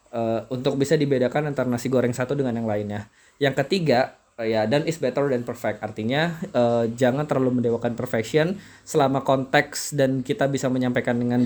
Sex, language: male, Indonesian